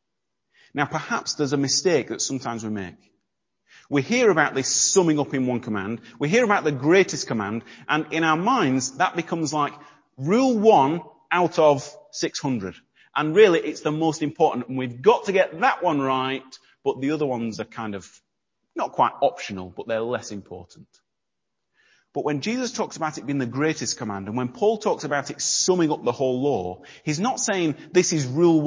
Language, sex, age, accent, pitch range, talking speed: English, male, 30-49, British, 120-160 Hz, 190 wpm